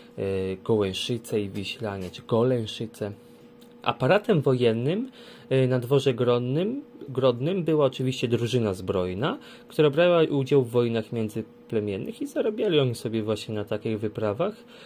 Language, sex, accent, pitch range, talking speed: Polish, male, native, 110-150 Hz, 115 wpm